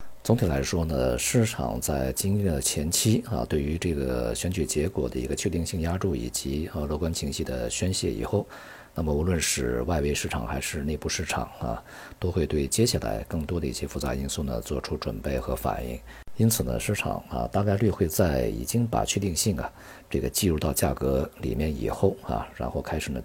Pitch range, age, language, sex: 65-85 Hz, 50-69, Chinese, male